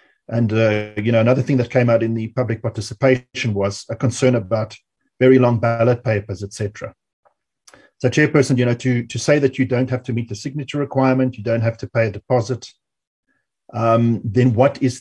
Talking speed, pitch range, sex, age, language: 195 wpm, 115-130 Hz, male, 40-59, English